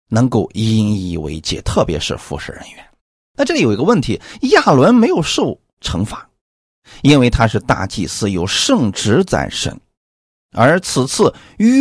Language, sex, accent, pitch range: Chinese, male, native, 105-170 Hz